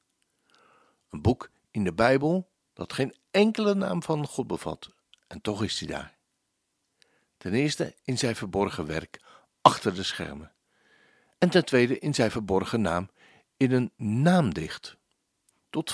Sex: male